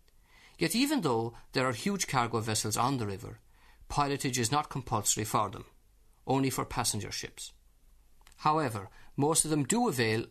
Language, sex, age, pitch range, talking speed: English, male, 50-69, 110-160 Hz, 155 wpm